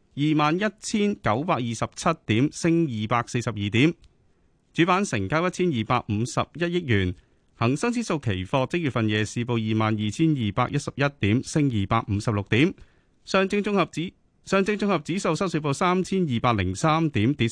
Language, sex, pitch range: Chinese, male, 110-160 Hz